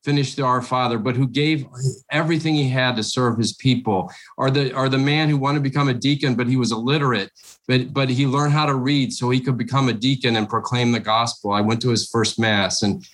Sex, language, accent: male, English, American